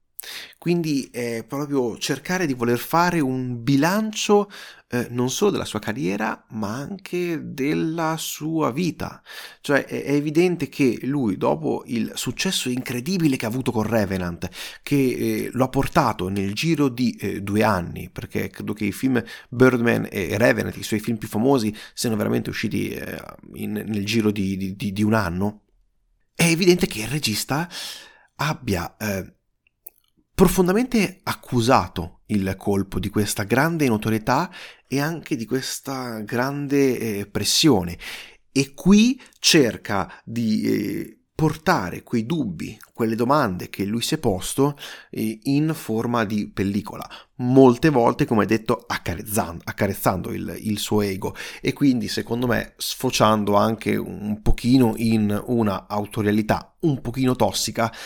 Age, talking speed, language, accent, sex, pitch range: 30-49, 140 wpm, Italian, native, male, 105-140 Hz